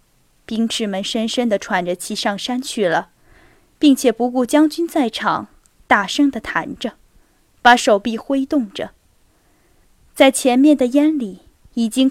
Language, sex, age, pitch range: Chinese, female, 10-29, 215-270 Hz